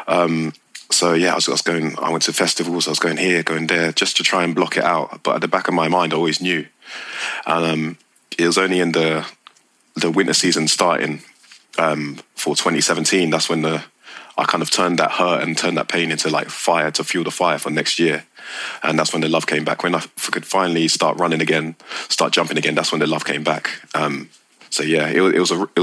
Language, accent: English, British